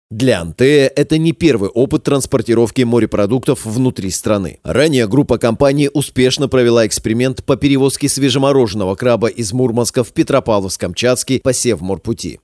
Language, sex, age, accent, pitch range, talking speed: Russian, male, 30-49, native, 115-140 Hz, 125 wpm